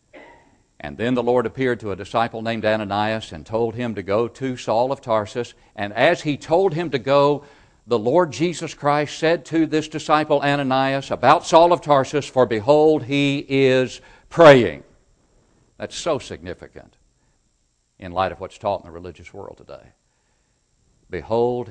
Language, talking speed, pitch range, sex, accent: English, 160 wpm, 105-145 Hz, male, American